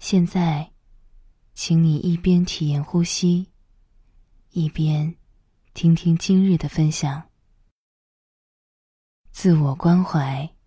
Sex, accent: female, native